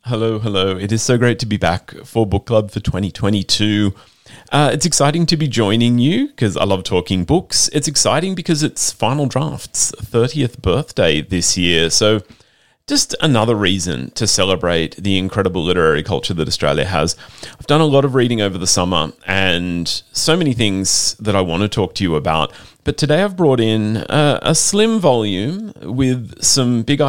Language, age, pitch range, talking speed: English, 30-49, 95-140 Hz, 180 wpm